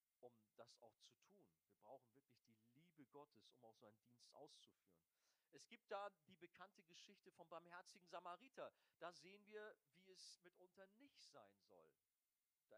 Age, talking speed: 40-59, 170 wpm